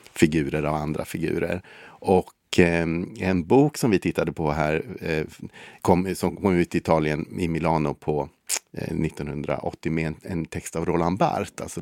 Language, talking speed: Swedish, 170 wpm